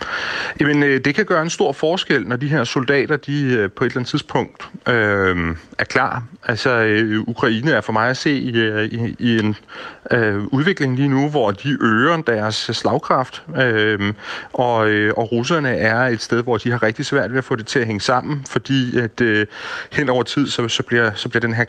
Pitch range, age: 110-135 Hz, 30-49